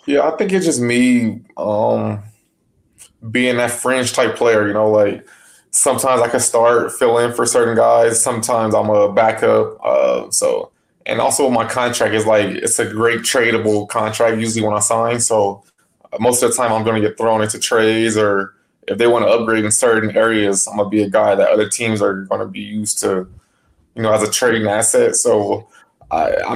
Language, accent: English, American